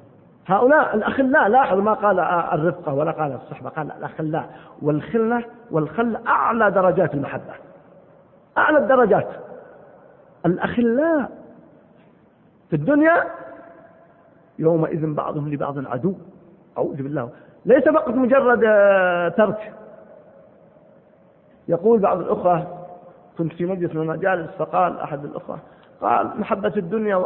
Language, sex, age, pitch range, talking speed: Arabic, male, 50-69, 155-210 Hz, 95 wpm